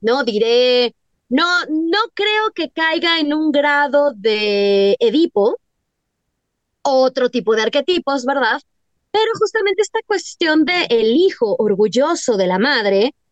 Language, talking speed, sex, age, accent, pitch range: Spanish, 125 wpm, female, 20-39, Mexican, 235-335 Hz